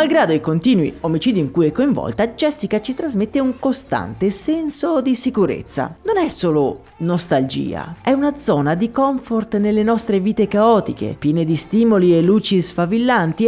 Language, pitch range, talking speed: Italian, 165-240 Hz, 155 wpm